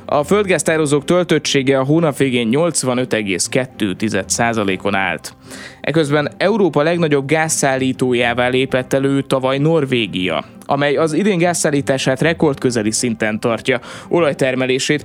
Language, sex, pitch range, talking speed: Hungarian, male, 120-155 Hz, 95 wpm